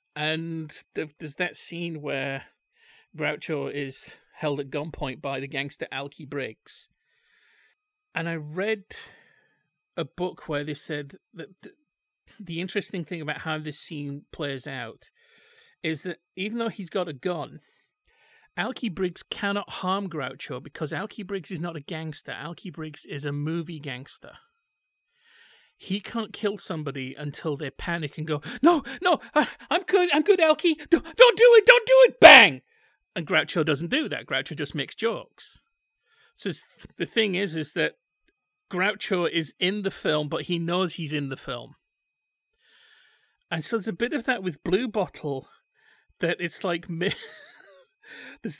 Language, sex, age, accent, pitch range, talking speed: English, male, 40-59, British, 155-230 Hz, 155 wpm